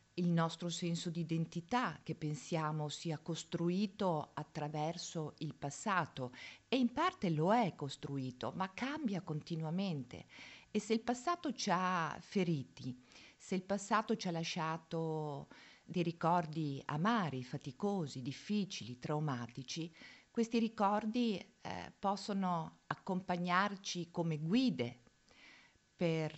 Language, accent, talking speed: Italian, native, 110 wpm